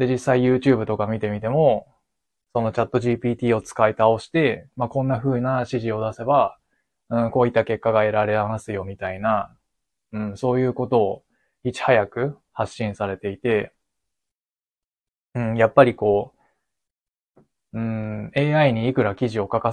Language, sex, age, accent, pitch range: Japanese, male, 20-39, native, 105-125 Hz